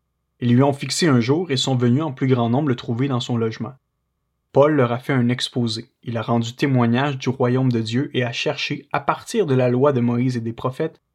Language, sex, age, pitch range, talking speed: French, male, 20-39, 120-140 Hz, 240 wpm